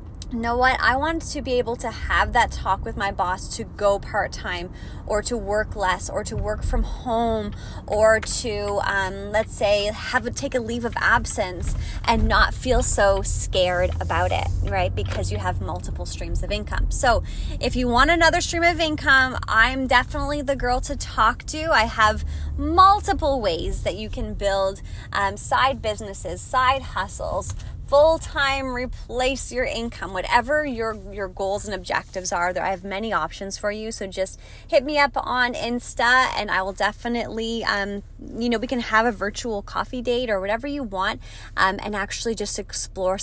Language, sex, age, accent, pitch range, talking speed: English, female, 20-39, American, 190-260 Hz, 180 wpm